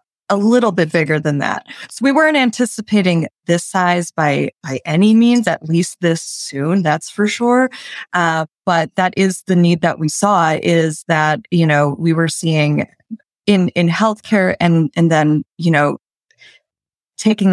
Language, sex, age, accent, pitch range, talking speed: English, female, 20-39, American, 160-185 Hz, 165 wpm